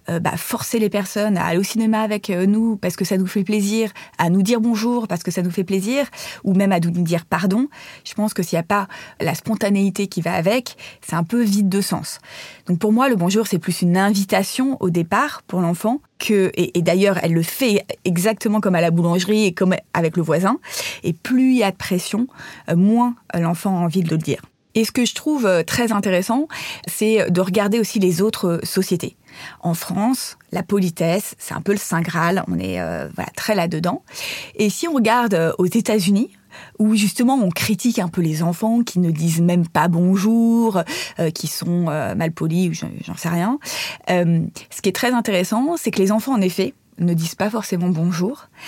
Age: 20-39